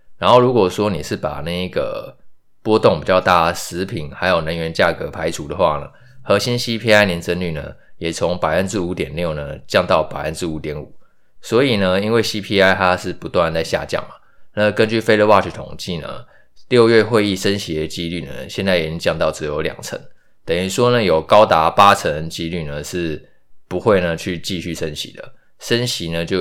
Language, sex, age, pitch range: Chinese, male, 20-39, 80-105 Hz